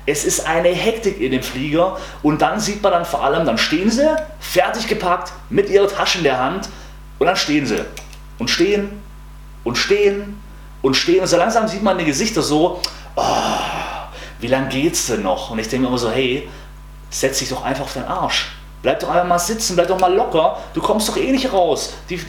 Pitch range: 130-200 Hz